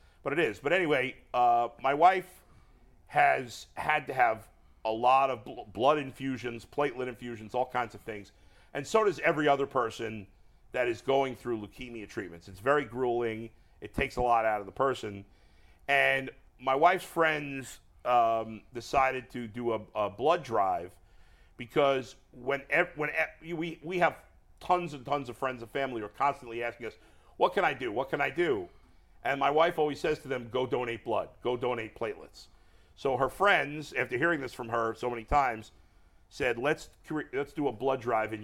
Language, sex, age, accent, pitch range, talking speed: English, male, 50-69, American, 115-145 Hz, 185 wpm